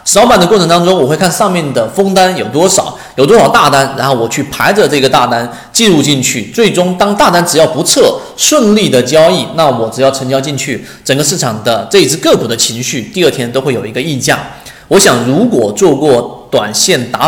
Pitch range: 125-185 Hz